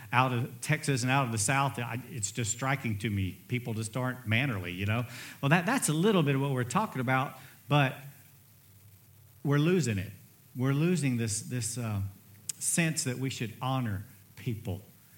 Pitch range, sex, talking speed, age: 115-150 Hz, male, 175 wpm, 50-69